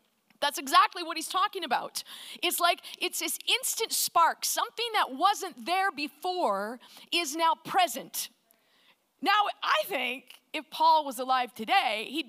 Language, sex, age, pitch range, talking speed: English, female, 40-59, 235-335 Hz, 140 wpm